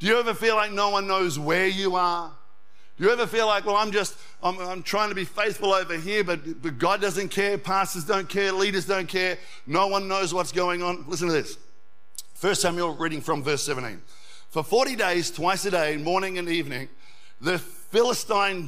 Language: English